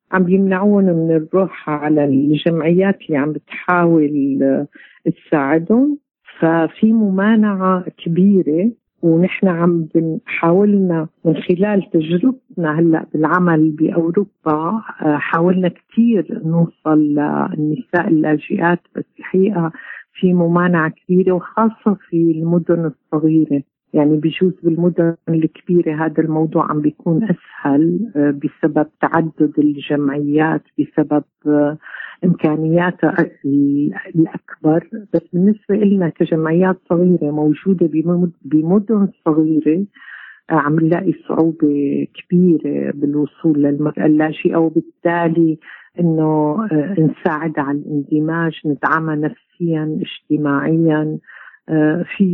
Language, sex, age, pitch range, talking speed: Arabic, female, 50-69, 155-180 Hz, 85 wpm